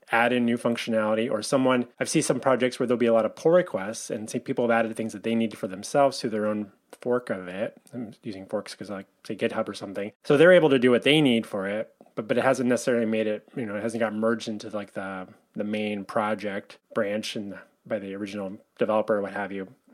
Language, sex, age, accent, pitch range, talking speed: English, male, 20-39, American, 110-135 Hz, 250 wpm